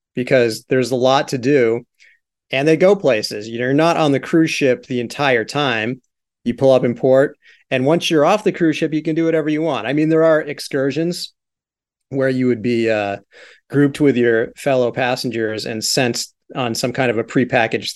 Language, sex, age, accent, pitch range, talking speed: English, male, 30-49, American, 120-150 Hz, 200 wpm